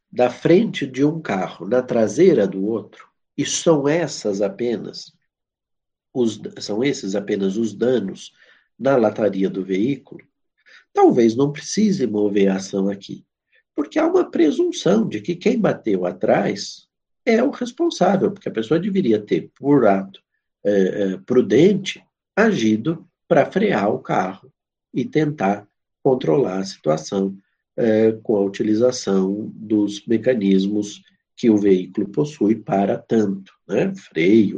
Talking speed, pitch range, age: 125 wpm, 100-160 Hz, 60-79